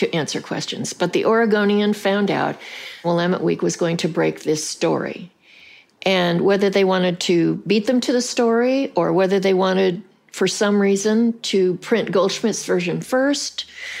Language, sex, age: English, female, 60-79